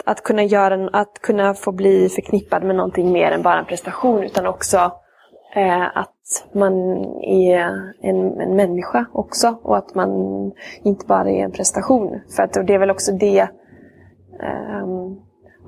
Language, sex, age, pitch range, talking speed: English, female, 20-39, 185-210 Hz, 155 wpm